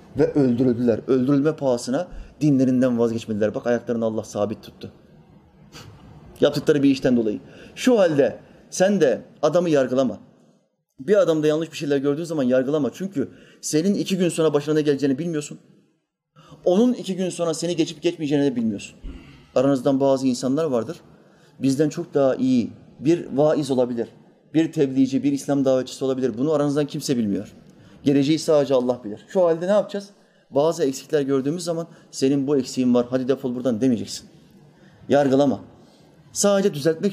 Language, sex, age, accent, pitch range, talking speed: Turkish, male, 30-49, native, 125-165 Hz, 145 wpm